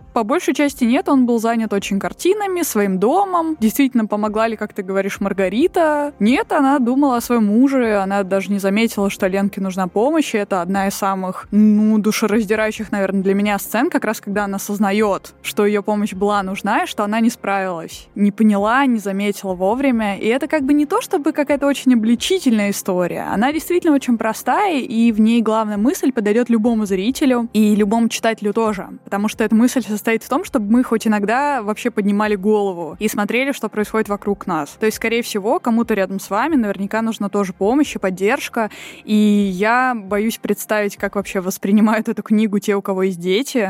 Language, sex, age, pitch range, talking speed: Russian, female, 20-39, 200-240 Hz, 190 wpm